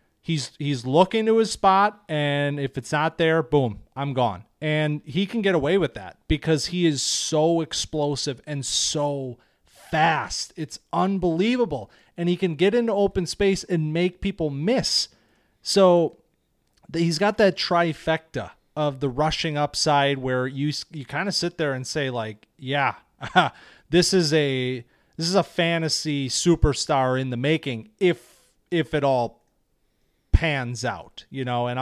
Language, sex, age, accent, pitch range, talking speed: English, male, 30-49, American, 130-175 Hz, 155 wpm